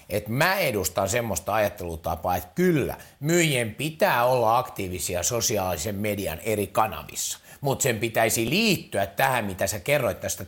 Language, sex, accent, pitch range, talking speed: Finnish, male, native, 105-170 Hz, 140 wpm